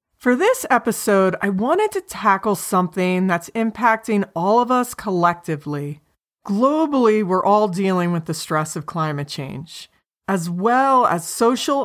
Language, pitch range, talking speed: English, 175-245 Hz, 140 wpm